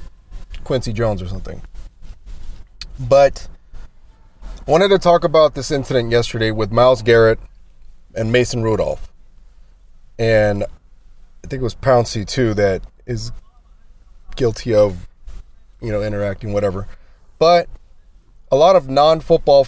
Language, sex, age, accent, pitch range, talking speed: English, male, 20-39, American, 90-140 Hz, 120 wpm